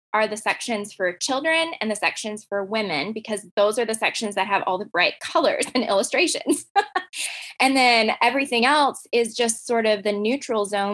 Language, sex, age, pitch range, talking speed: English, female, 20-39, 200-255 Hz, 185 wpm